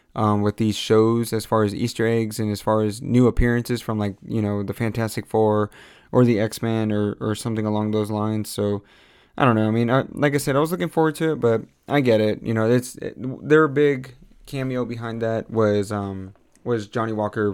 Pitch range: 105-130 Hz